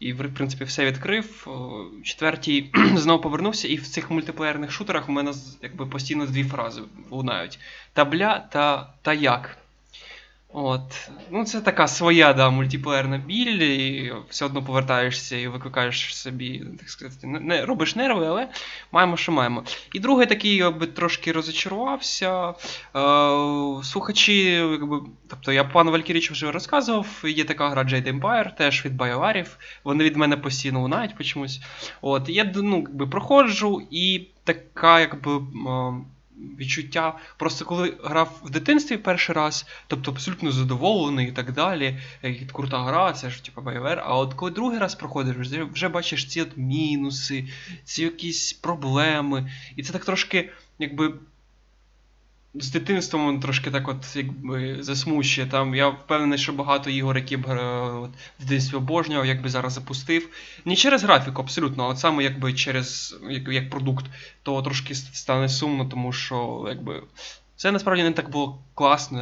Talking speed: 145 wpm